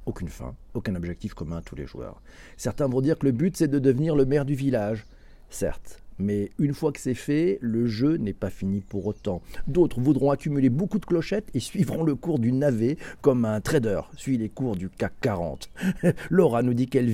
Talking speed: 215 wpm